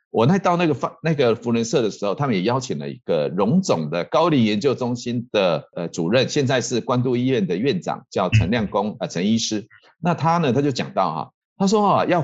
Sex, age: male, 50-69